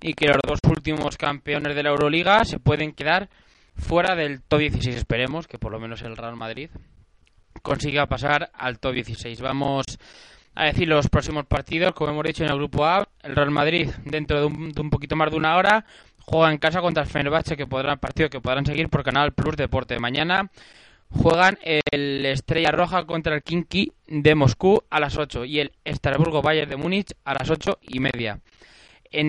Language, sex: Spanish, male